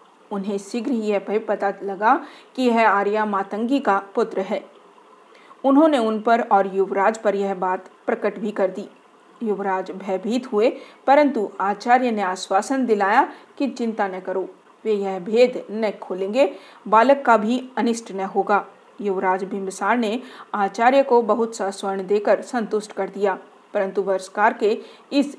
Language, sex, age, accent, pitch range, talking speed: Hindi, female, 40-59, native, 195-240 Hz, 150 wpm